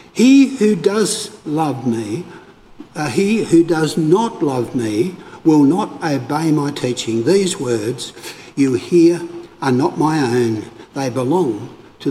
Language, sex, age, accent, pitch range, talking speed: English, male, 60-79, Australian, 135-195 Hz, 140 wpm